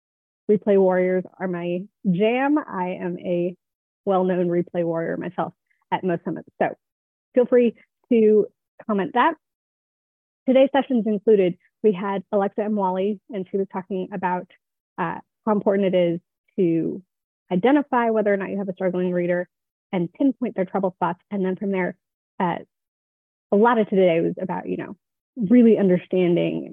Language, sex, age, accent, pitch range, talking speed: English, female, 30-49, American, 175-205 Hz, 155 wpm